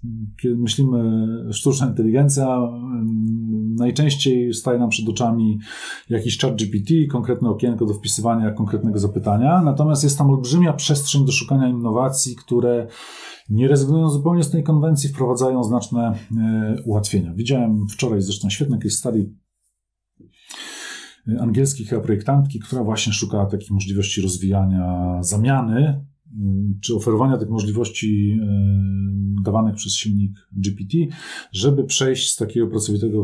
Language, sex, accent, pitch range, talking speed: Polish, male, native, 100-130 Hz, 115 wpm